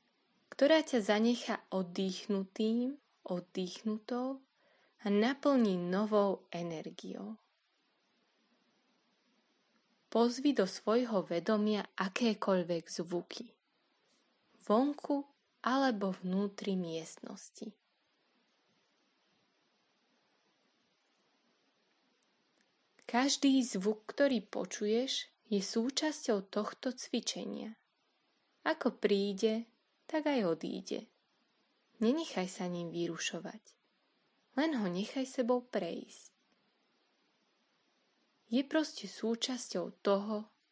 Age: 20-39